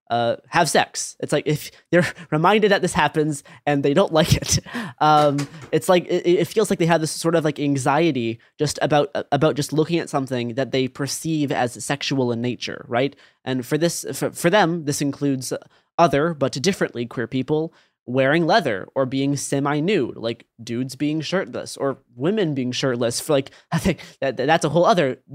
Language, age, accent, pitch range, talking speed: English, 20-39, American, 130-160 Hz, 190 wpm